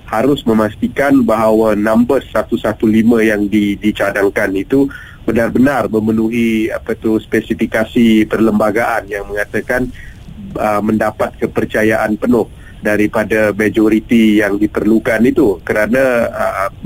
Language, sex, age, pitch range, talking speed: Malay, male, 30-49, 105-115 Hz, 100 wpm